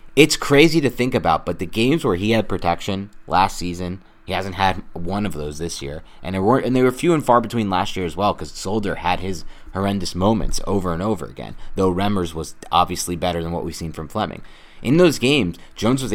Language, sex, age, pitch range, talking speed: English, male, 30-49, 90-110 Hz, 230 wpm